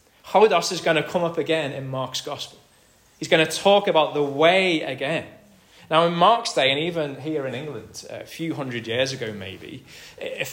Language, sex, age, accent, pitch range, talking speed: English, male, 20-39, British, 125-165 Hz, 195 wpm